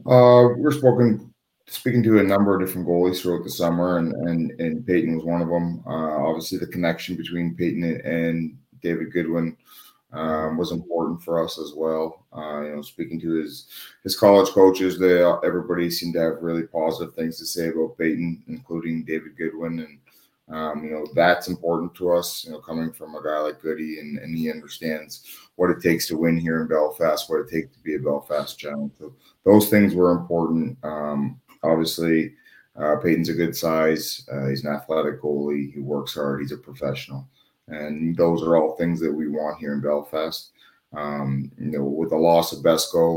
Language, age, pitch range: English, 30-49, 75-85 Hz